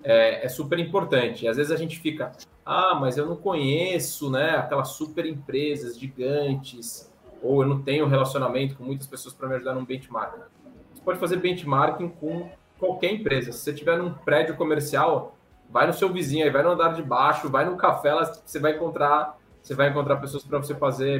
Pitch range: 135-170 Hz